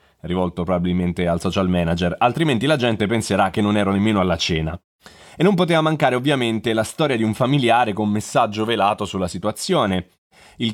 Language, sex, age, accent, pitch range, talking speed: Italian, male, 30-49, native, 95-125 Hz, 175 wpm